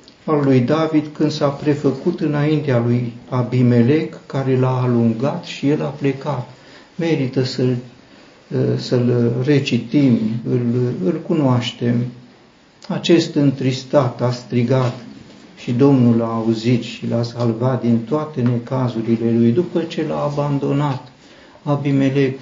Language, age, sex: Romanian, 50-69, male